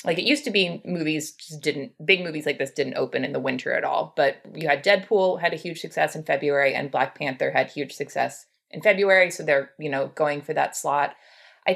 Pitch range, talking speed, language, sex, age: 150-200 Hz, 235 wpm, English, female, 20-39